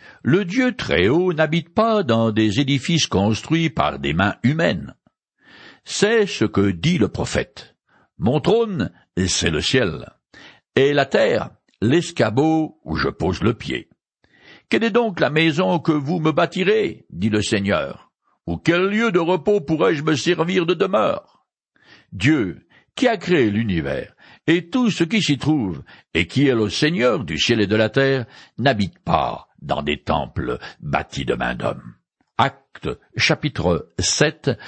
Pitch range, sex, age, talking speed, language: 110-175 Hz, male, 60-79, 155 wpm, French